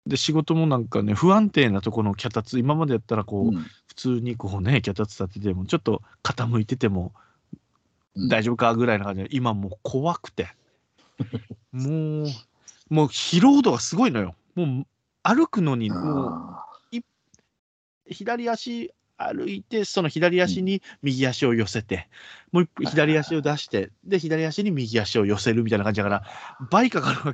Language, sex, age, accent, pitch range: Japanese, male, 40-59, native, 105-165 Hz